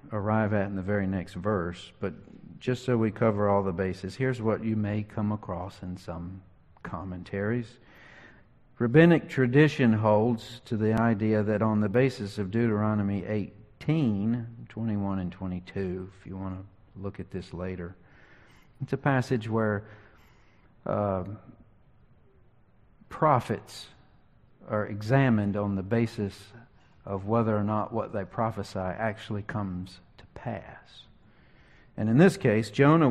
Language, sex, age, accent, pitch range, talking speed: English, male, 50-69, American, 100-120 Hz, 135 wpm